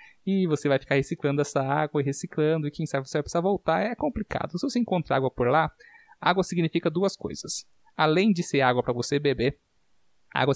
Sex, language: male, Portuguese